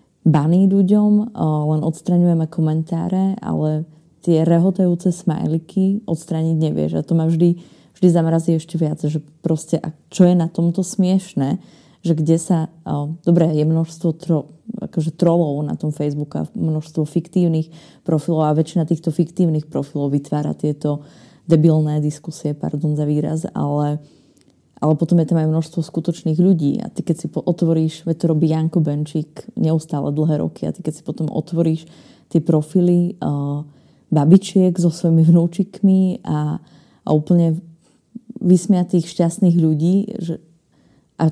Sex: female